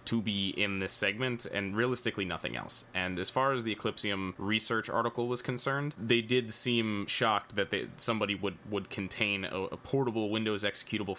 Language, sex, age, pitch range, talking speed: English, male, 20-39, 100-120 Hz, 180 wpm